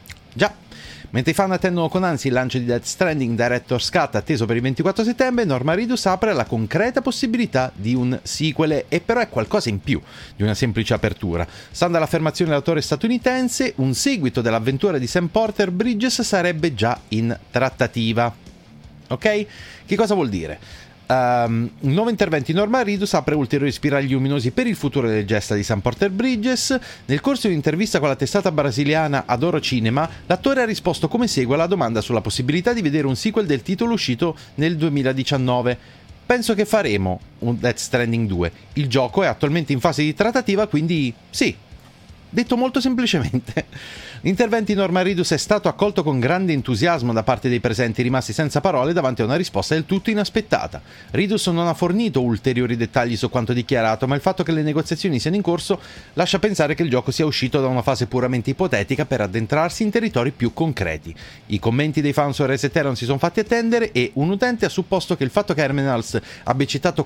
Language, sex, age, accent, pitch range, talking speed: Italian, male, 30-49, native, 125-190 Hz, 185 wpm